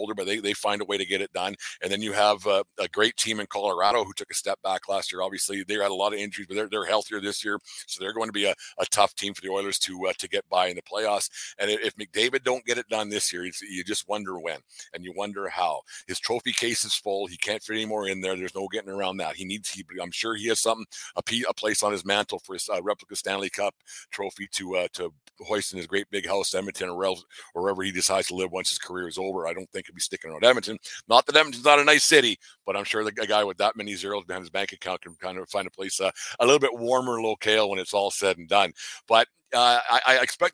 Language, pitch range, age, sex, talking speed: English, 100-110 Hz, 50-69, male, 280 wpm